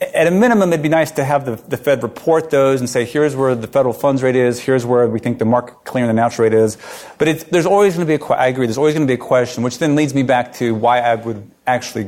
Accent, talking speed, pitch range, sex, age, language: American, 300 wpm, 120-150 Hz, male, 40-59, English